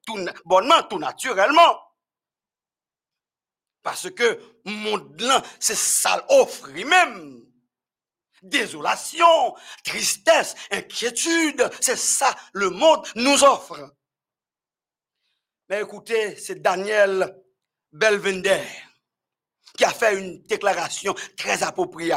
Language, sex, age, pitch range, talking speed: French, male, 50-69, 190-300 Hz, 90 wpm